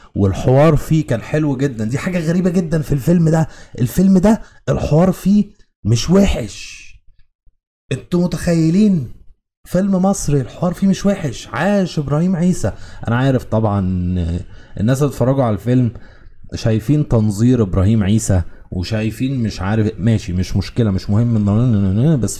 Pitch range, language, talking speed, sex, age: 95-135 Hz, Arabic, 135 wpm, male, 30-49